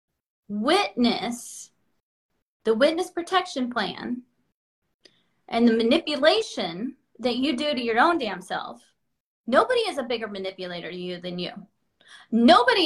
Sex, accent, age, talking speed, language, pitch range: female, American, 20-39, 120 wpm, English, 215-305 Hz